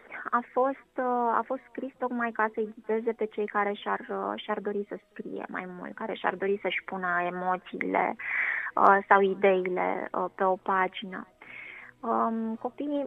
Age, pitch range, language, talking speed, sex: 20-39, 200-240 Hz, Romanian, 140 wpm, female